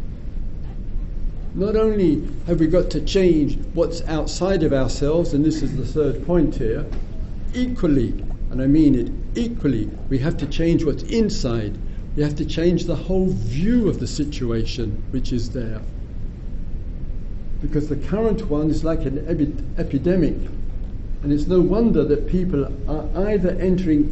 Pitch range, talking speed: 125-155 Hz, 150 wpm